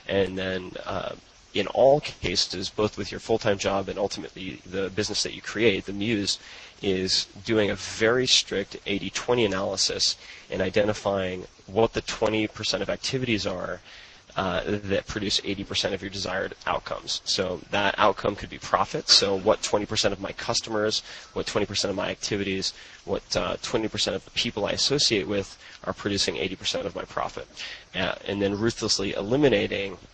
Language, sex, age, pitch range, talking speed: English, male, 20-39, 95-110 Hz, 160 wpm